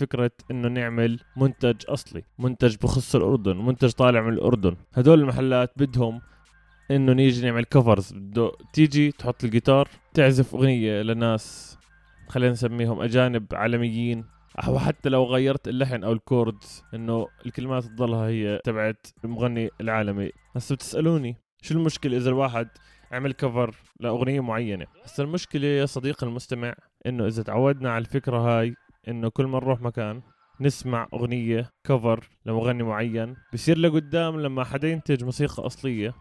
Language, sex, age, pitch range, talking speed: Arabic, male, 20-39, 115-140 Hz, 135 wpm